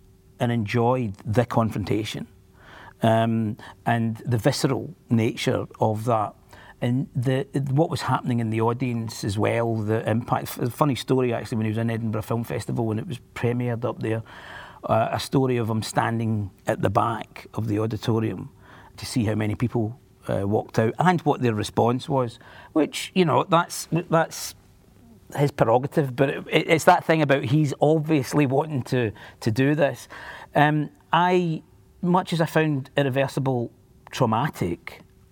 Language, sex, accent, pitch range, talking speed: English, male, British, 110-135 Hz, 160 wpm